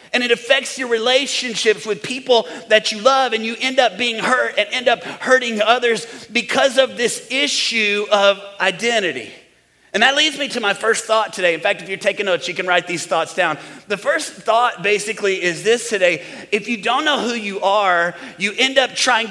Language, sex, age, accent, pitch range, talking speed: English, male, 30-49, American, 205-255 Hz, 205 wpm